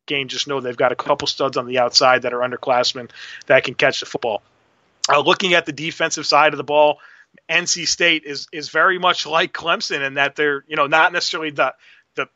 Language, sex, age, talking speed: English, male, 30-49, 220 wpm